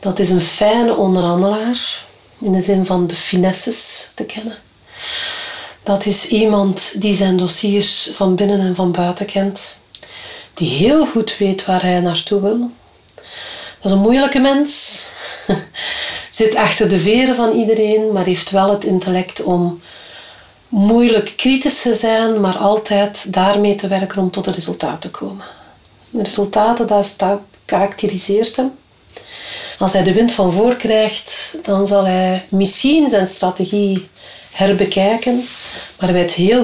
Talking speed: 145 wpm